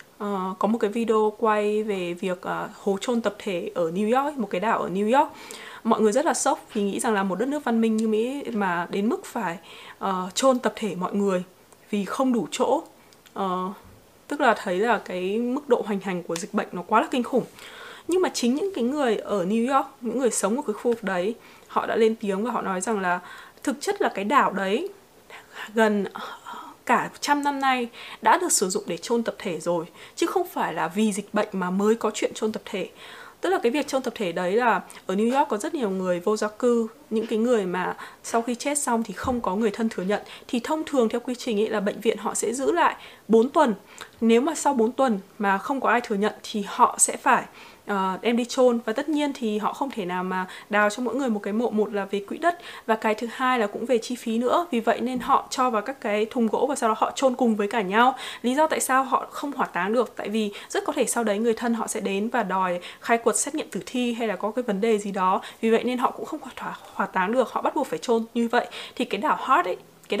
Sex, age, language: female, 20-39, Vietnamese